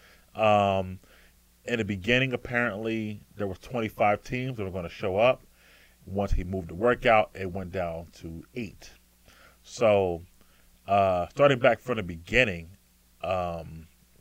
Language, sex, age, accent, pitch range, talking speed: English, male, 30-49, American, 85-120 Hz, 140 wpm